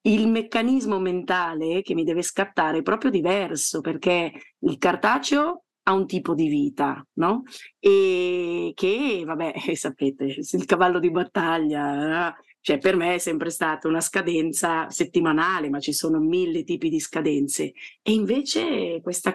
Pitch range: 165-230 Hz